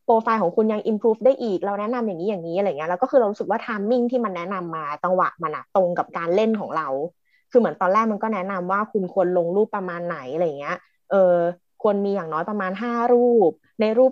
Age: 20-39